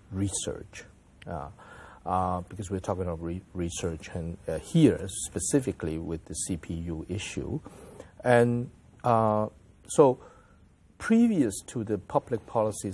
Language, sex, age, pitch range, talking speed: English, male, 50-69, 90-110 Hz, 115 wpm